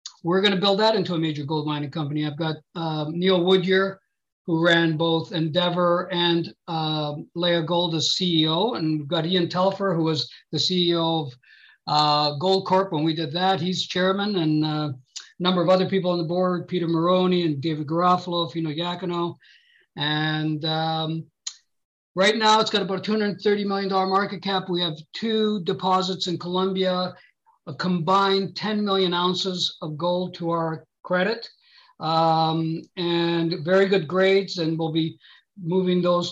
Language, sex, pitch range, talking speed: English, male, 160-190 Hz, 165 wpm